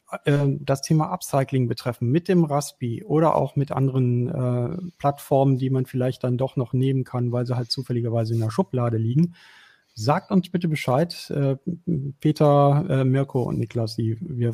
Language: German